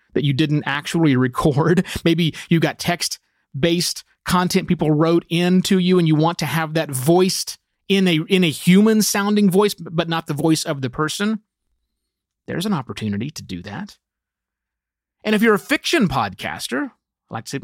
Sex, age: male, 30-49